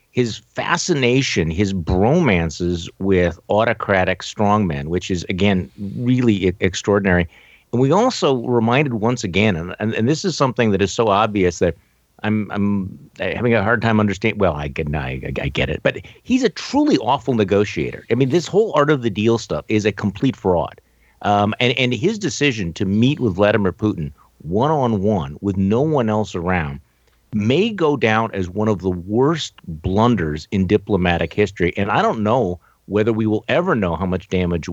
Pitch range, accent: 90-115 Hz, American